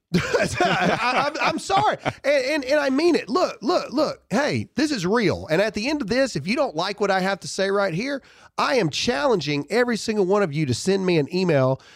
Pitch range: 160-250 Hz